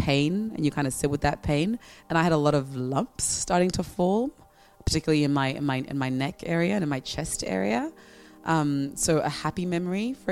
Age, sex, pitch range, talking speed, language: 20-39, female, 140-170 Hz, 225 wpm, English